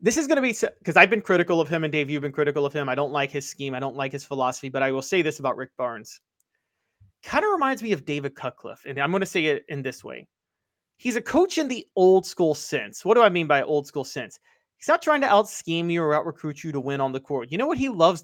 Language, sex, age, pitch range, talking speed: English, male, 30-49, 145-210 Hz, 295 wpm